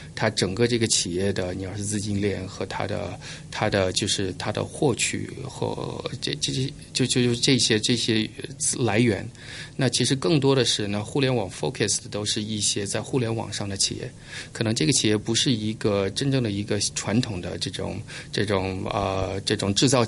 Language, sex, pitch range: Chinese, male, 100-125 Hz